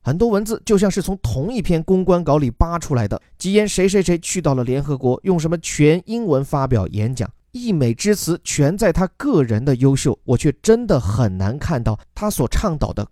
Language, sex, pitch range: Chinese, male, 125-185 Hz